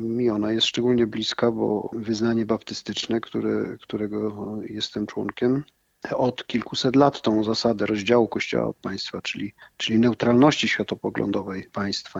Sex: male